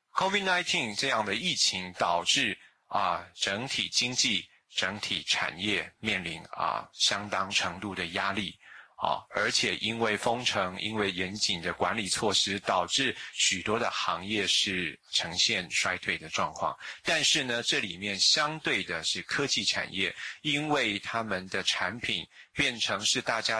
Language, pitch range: Chinese, 95-120 Hz